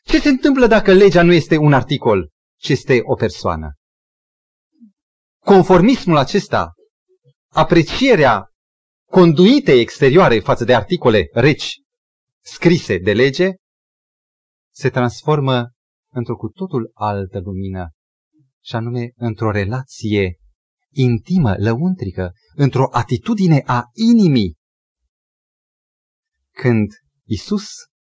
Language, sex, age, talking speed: Romanian, male, 30-49, 95 wpm